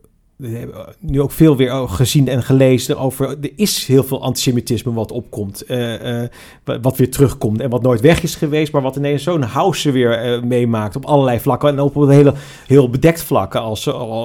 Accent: Dutch